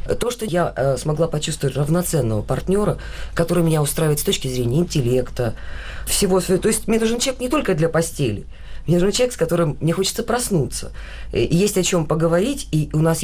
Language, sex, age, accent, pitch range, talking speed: Russian, female, 20-39, native, 130-180 Hz, 185 wpm